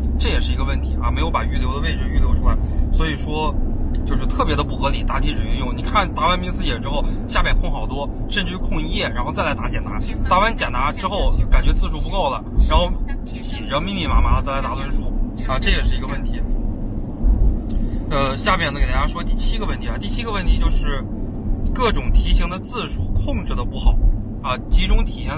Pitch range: 75-110 Hz